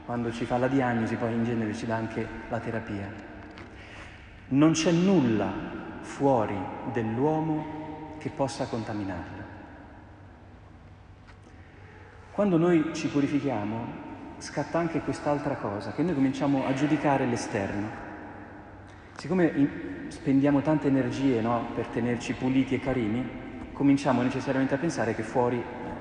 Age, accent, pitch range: 40-59, native, 105-150 Hz